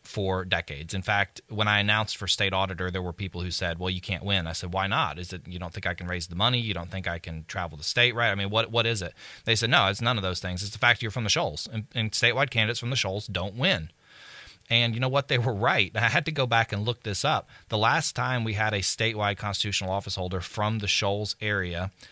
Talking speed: 275 wpm